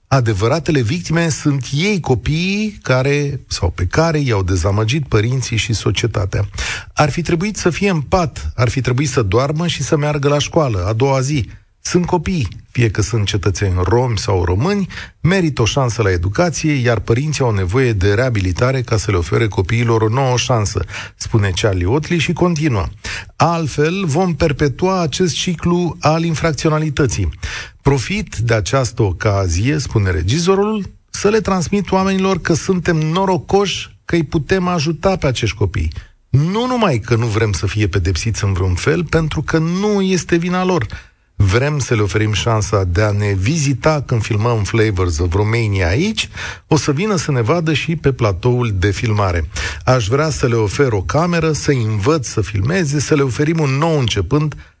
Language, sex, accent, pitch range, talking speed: Romanian, male, native, 105-160 Hz, 170 wpm